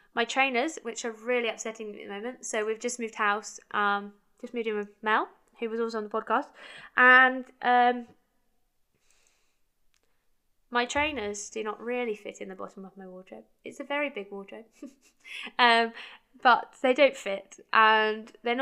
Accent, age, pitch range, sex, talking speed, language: British, 10-29, 215-265 Hz, female, 170 wpm, English